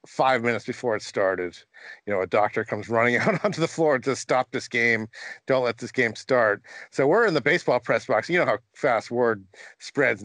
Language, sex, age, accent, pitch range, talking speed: English, male, 50-69, American, 115-135 Hz, 215 wpm